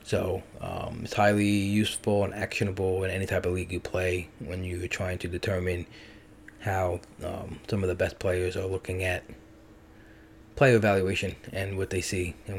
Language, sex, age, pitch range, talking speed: English, male, 20-39, 90-110 Hz, 170 wpm